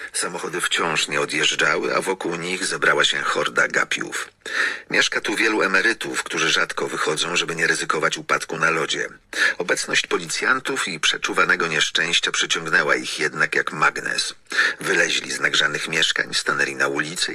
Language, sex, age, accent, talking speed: Polish, male, 50-69, native, 140 wpm